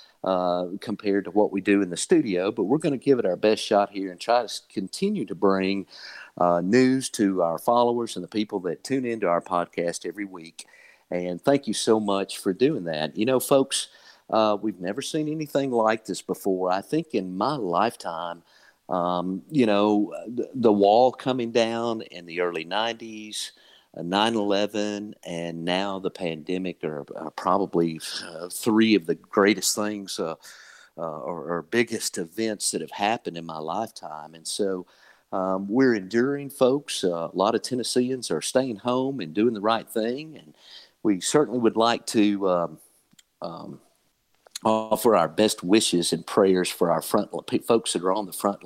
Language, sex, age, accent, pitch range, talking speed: English, male, 50-69, American, 90-115 Hz, 180 wpm